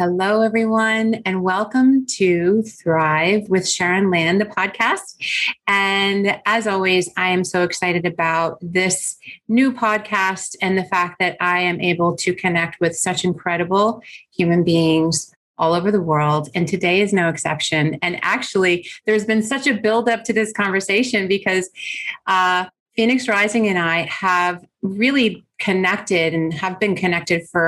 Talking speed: 150 wpm